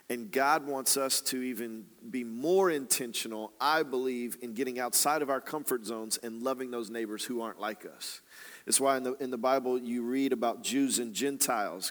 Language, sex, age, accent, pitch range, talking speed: English, male, 40-59, American, 125-165 Hz, 195 wpm